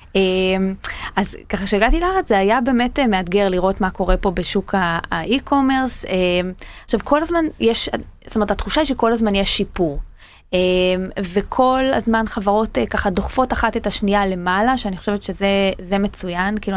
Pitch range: 185-230 Hz